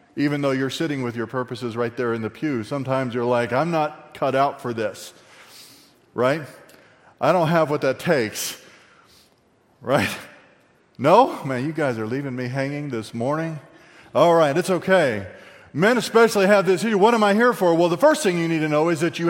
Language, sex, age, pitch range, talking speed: English, male, 40-59, 130-175 Hz, 200 wpm